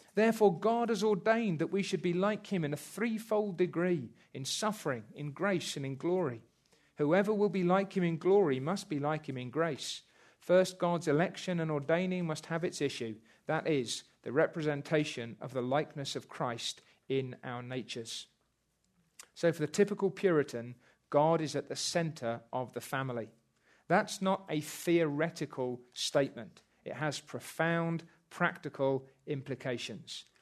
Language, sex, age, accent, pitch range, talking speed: English, male, 40-59, British, 135-185 Hz, 155 wpm